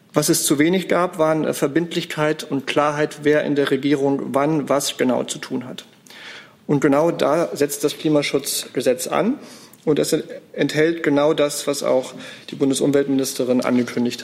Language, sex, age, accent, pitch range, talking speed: German, male, 40-59, German, 140-165 Hz, 150 wpm